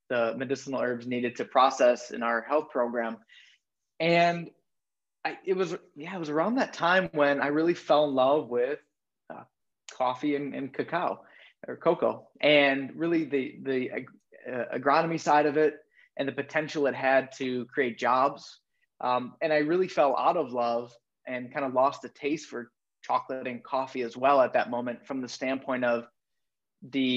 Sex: male